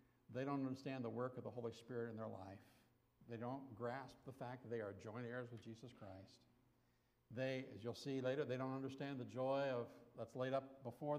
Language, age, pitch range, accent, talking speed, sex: English, 60-79, 110-135 Hz, American, 215 wpm, male